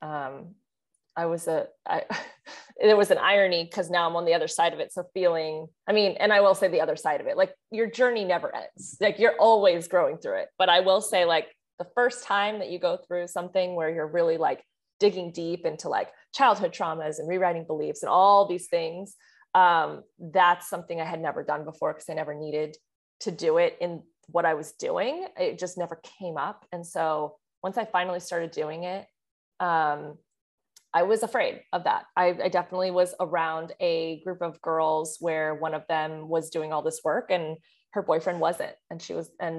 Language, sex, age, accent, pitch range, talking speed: English, female, 30-49, American, 160-190 Hz, 205 wpm